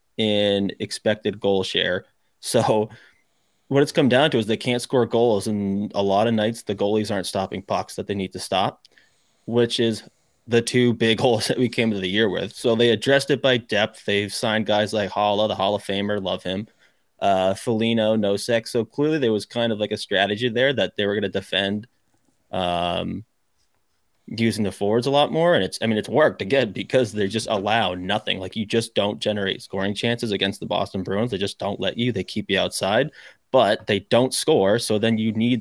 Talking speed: 215 wpm